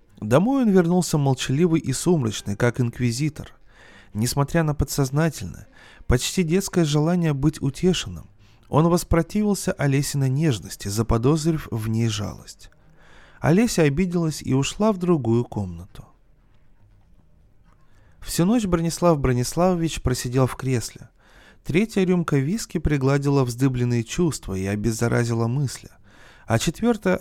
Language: Russian